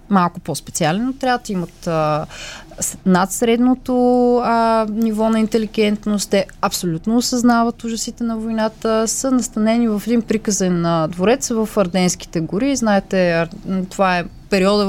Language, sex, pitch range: Bulgarian, female, 185-235 Hz